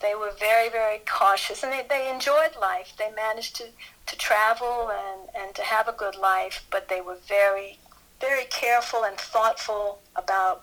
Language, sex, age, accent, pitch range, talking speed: English, female, 50-69, American, 190-220 Hz, 175 wpm